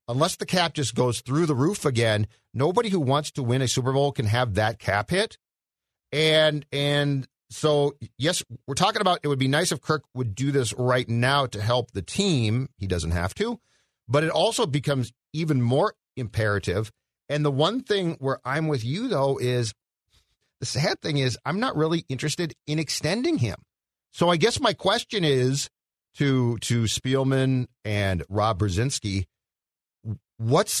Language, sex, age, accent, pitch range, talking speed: English, male, 40-59, American, 110-155 Hz, 175 wpm